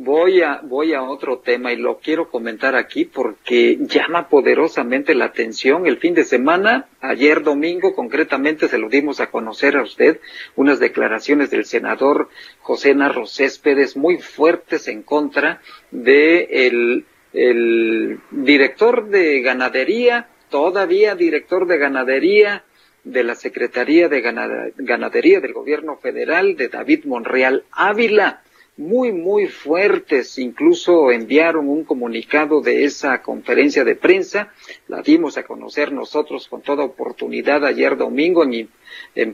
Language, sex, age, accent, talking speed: Spanish, male, 50-69, Mexican, 135 wpm